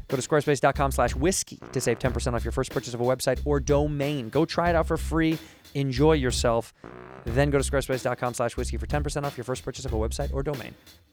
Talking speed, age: 215 wpm, 20-39